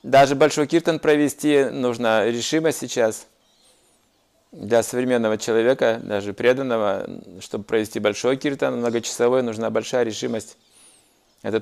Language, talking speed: Russian, 110 wpm